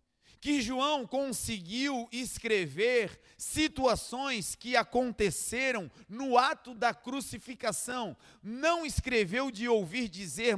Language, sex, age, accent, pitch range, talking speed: Portuguese, male, 40-59, Brazilian, 200-255 Hz, 90 wpm